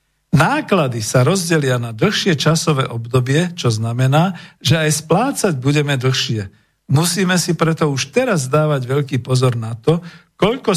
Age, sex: 50-69, male